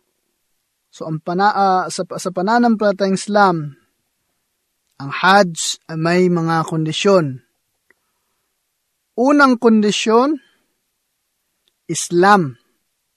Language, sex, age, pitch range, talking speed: Filipino, male, 20-39, 170-210 Hz, 70 wpm